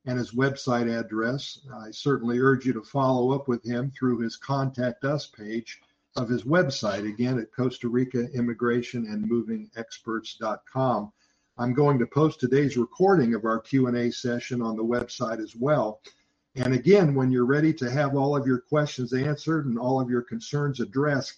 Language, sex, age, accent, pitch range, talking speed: English, male, 50-69, American, 120-140 Hz, 160 wpm